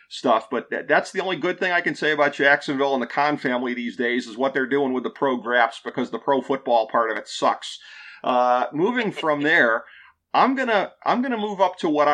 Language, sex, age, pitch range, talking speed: English, male, 40-59, 125-145 Hz, 230 wpm